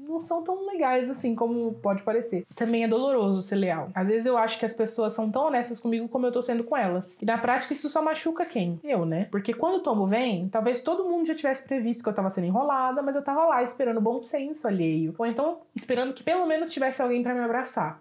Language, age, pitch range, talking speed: Portuguese, 20-39, 200-265 Hz, 245 wpm